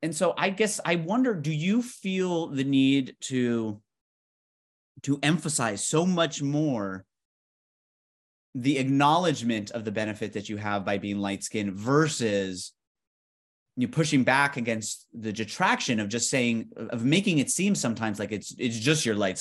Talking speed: 150 wpm